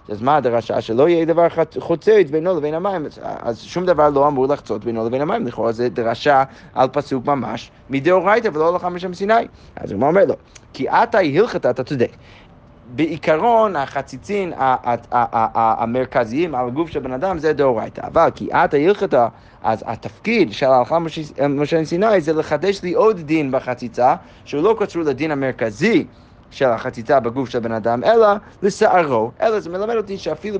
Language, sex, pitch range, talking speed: Hebrew, male, 125-180 Hz, 180 wpm